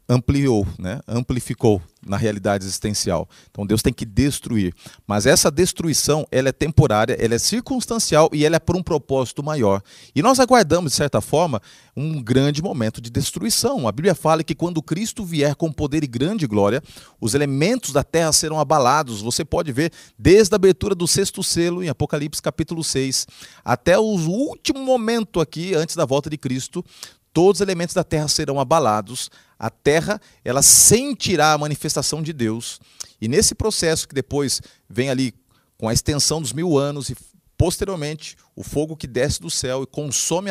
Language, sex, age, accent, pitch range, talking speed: Portuguese, male, 30-49, Brazilian, 125-175 Hz, 175 wpm